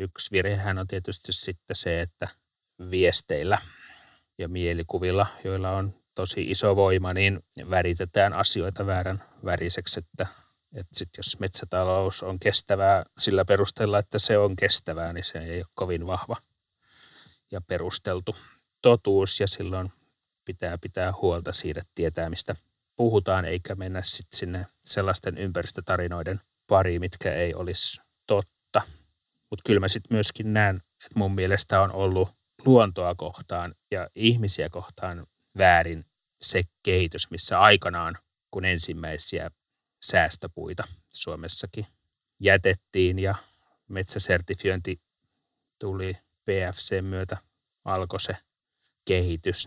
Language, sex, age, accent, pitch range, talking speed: Finnish, male, 30-49, native, 90-100 Hz, 115 wpm